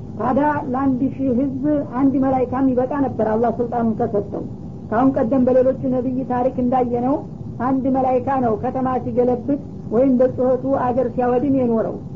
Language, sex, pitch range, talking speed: Amharic, female, 245-265 Hz, 130 wpm